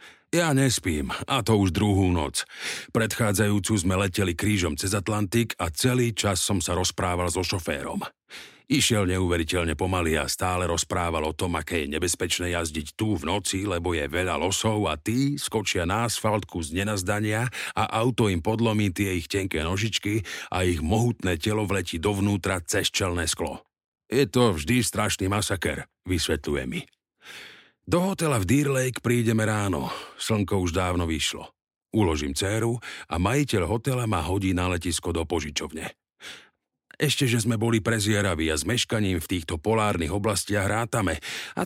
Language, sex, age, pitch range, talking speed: Slovak, male, 50-69, 90-115 Hz, 155 wpm